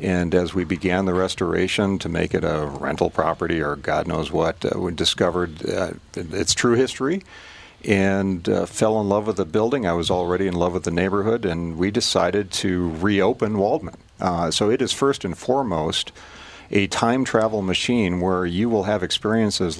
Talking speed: 185 wpm